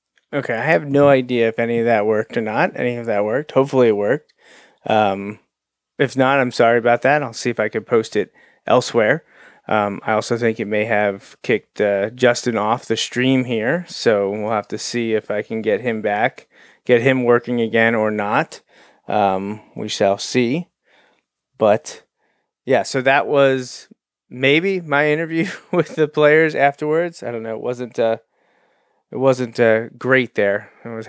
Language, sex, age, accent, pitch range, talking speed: English, male, 30-49, American, 110-140 Hz, 180 wpm